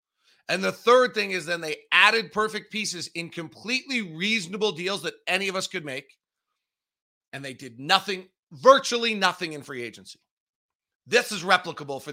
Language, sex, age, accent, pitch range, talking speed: English, male, 40-59, American, 180-235 Hz, 165 wpm